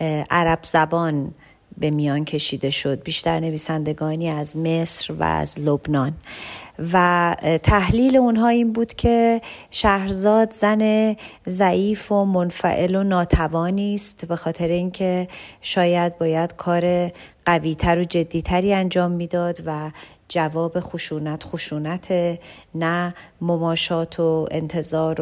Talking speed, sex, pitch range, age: 110 wpm, female, 160-185 Hz, 40-59